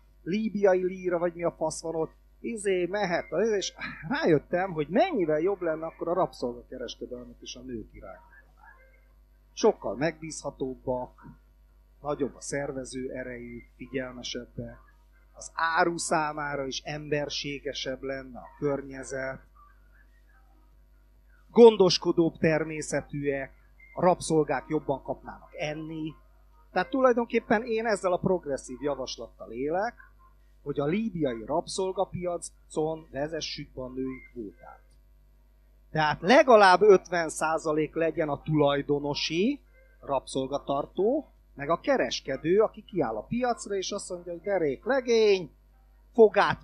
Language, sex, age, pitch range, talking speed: Hungarian, male, 30-49, 140-190 Hz, 105 wpm